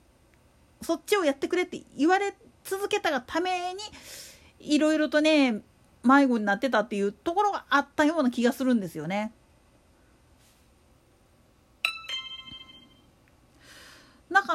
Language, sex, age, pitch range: Japanese, female, 40-59, 230-325 Hz